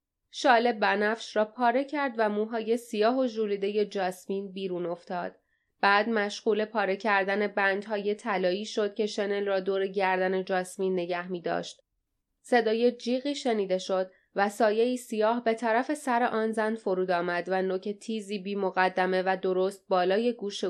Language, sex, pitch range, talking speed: Persian, female, 185-230 Hz, 155 wpm